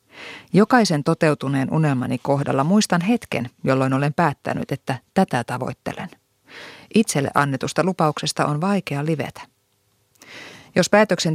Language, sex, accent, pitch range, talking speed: Finnish, female, native, 135-170 Hz, 105 wpm